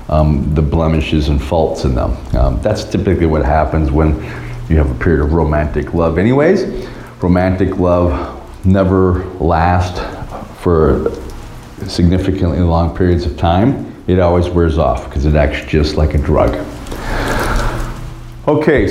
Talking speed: 135 wpm